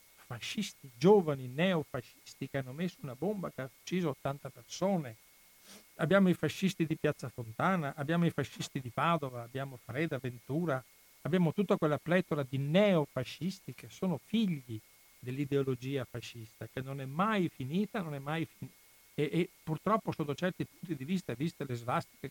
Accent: native